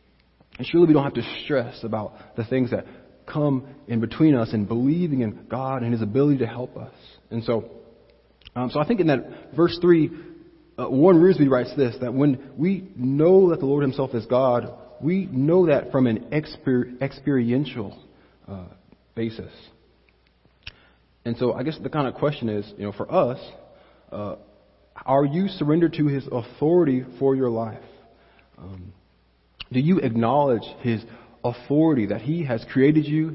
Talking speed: 165 wpm